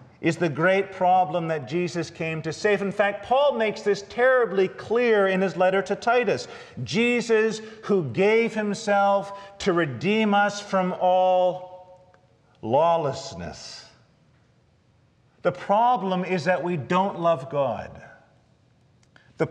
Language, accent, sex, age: English, American, male, 40-59